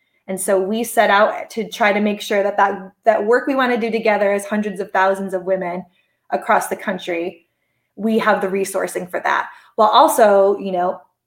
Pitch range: 190-225 Hz